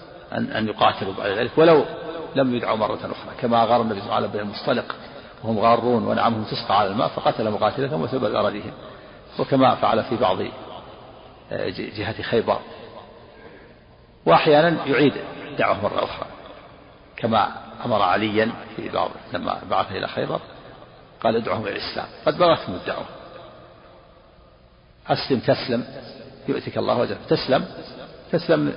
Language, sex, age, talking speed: Arabic, male, 50-69, 130 wpm